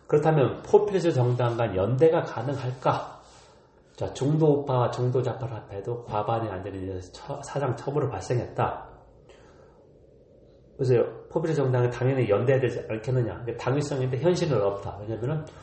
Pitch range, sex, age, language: 100-130 Hz, male, 40-59, Korean